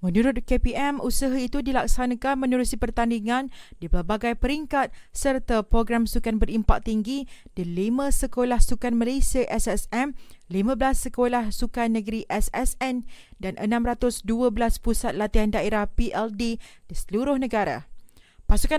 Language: Malay